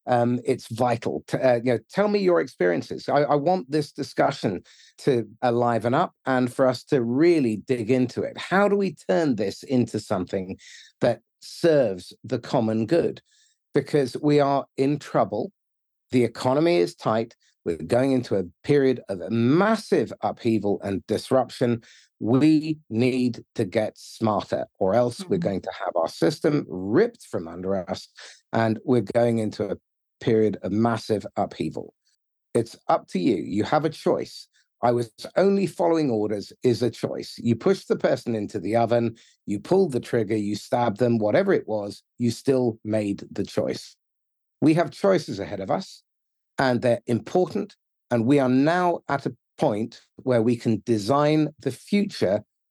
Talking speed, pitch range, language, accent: 165 wpm, 115-150 Hz, English, British